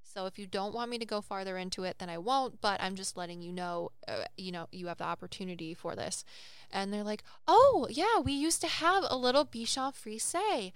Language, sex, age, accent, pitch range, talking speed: English, female, 10-29, American, 200-255 Hz, 235 wpm